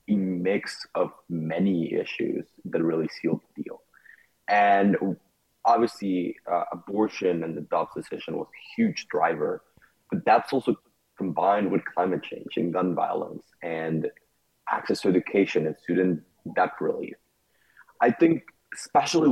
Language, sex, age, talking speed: English, male, 30-49, 135 wpm